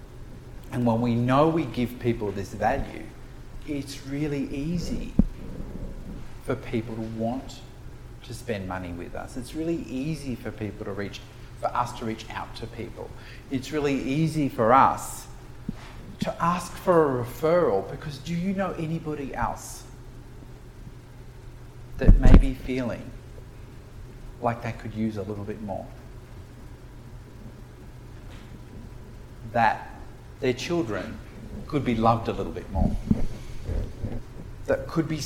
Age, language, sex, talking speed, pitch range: 40-59, English, male, 130 wpm, 110-125 Hz